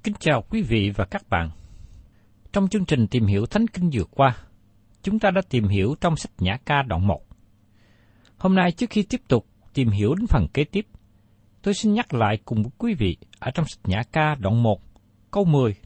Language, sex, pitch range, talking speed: Vietnamese, male, 100-160 Hz, 210 wpm